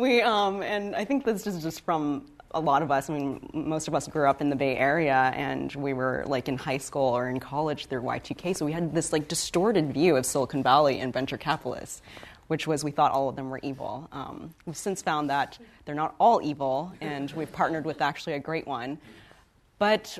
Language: English